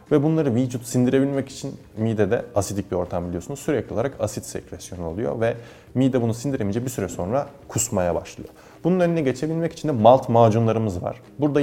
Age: 30-49